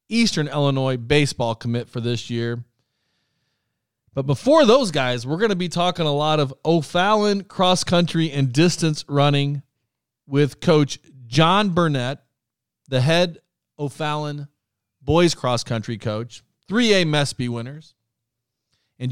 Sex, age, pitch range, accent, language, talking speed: male, 40-59, 115-150 Hz, American, English, 120 wpm